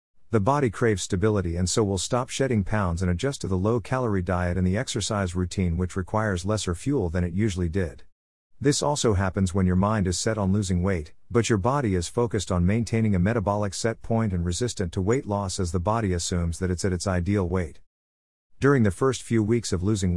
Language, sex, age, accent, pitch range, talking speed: English, male, 50-69, American, 90-115 Hz, 215 wpm